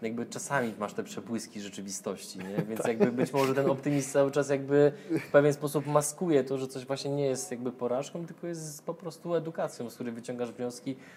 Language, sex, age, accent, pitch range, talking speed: Polish, male, 20-39, native, 115-135 Hz, 200 wpm